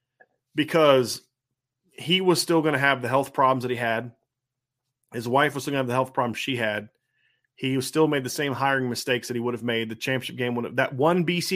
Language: English